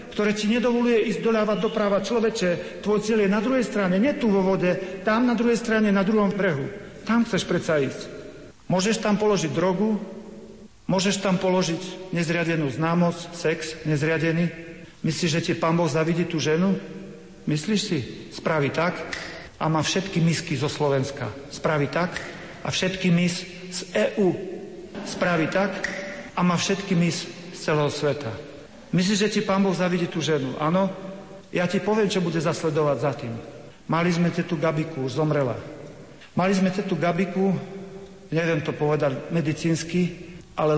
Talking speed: 155 wpm